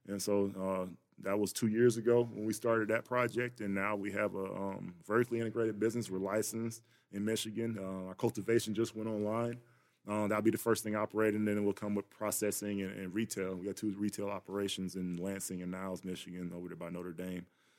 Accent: American